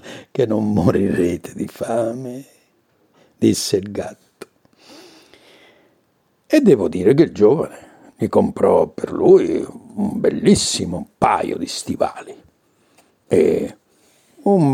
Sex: male